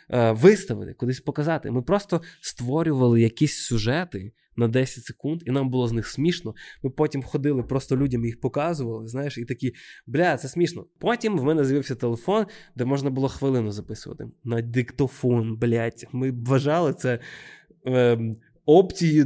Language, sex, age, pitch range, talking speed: Ukrainian, male, 20-39, 120-150 Hz, 150 wpm